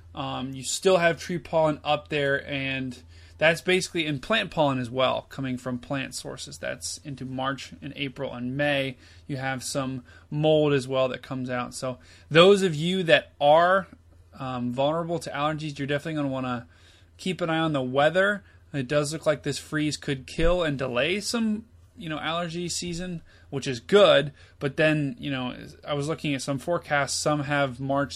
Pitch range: 130-155 Hz